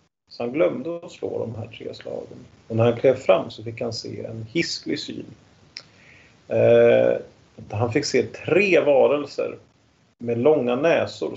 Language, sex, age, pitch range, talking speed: Swedish, male, 30-49, 115-175 Hz, 160 wpm